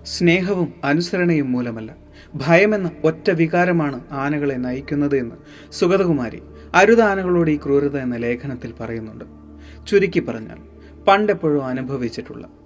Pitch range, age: 115-170 Hz, 30-49